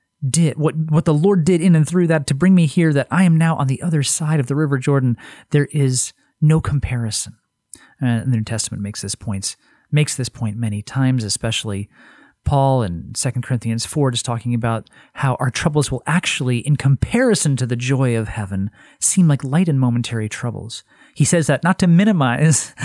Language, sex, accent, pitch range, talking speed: English, male, American, 120-165 Hz, 195 wpm